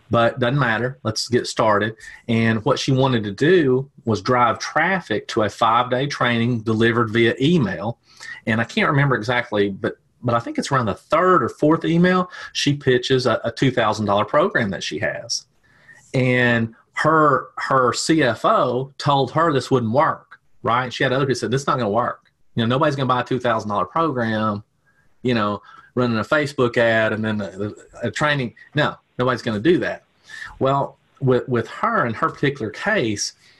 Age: 30-49